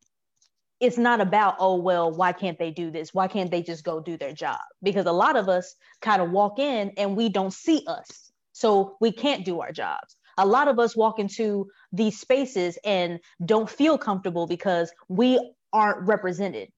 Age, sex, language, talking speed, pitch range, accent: 20-39, female, English, 195 wpm, 180-230 Hz, American